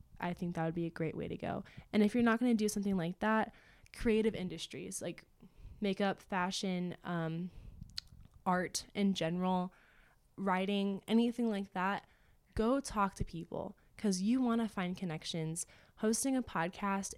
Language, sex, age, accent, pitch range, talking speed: English, female, 20-39, American, 175-210 Hz, 160 wpm